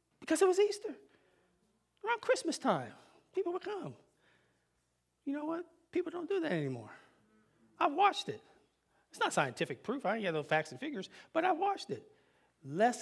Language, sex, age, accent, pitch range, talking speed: English, male, 30-49, American, 145-215 Hz, 170 wpm